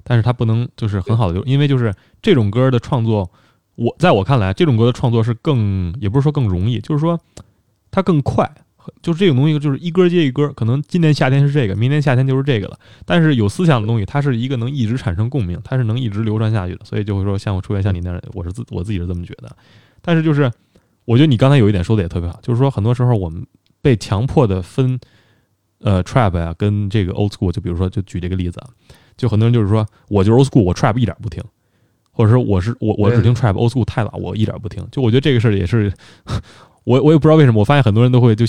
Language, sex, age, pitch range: Chinese, male, 20-39, 105-135 Hz